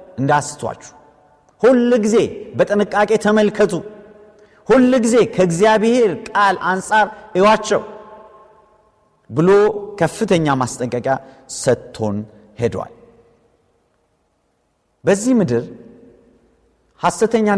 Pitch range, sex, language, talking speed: 145-215 Hz, male, Amharic, 60 wpm